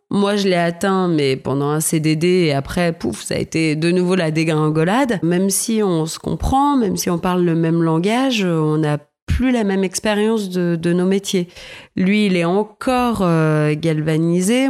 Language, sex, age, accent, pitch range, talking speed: French, female, 30-49, French, 150-195 Hz, 185 wpm